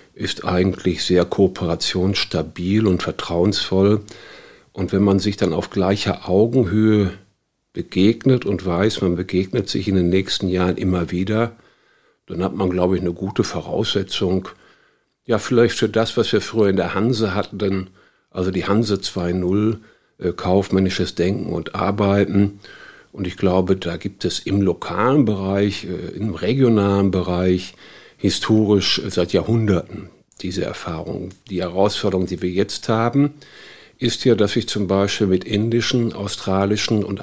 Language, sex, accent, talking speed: German, male, German, 140 wpm